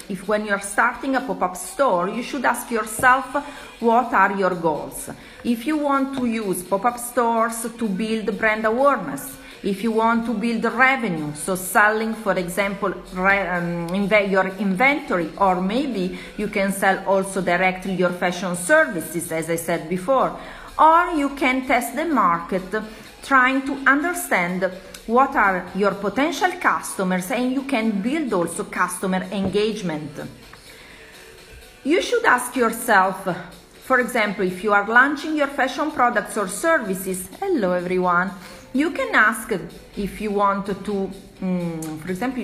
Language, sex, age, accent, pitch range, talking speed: English, female, 40-59, Italian, 185-250 Hz, 145 wpm